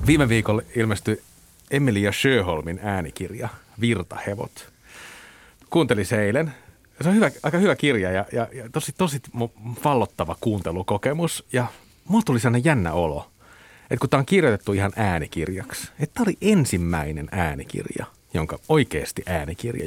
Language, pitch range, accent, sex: Finnish, 95-140 Hz, native, male